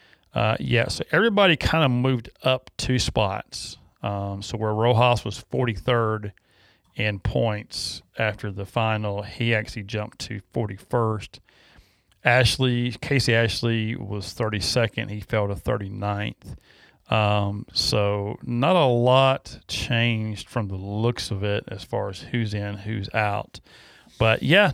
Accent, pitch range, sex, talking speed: American, 105-125 Hz, male, 135 wpm